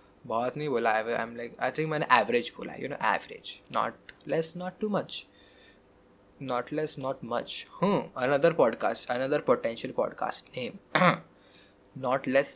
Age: 20-39